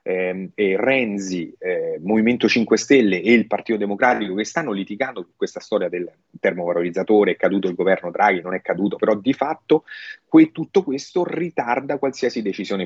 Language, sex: Italian, male